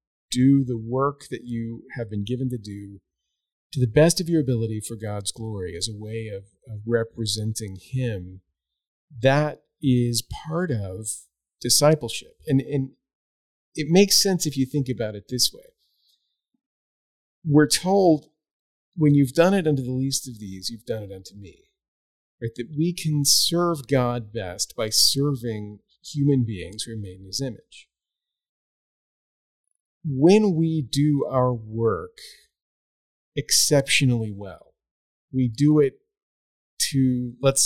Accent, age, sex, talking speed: American, 40-59, male, 140 wpm